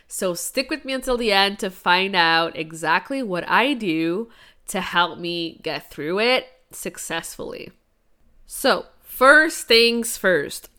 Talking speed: 140 wpm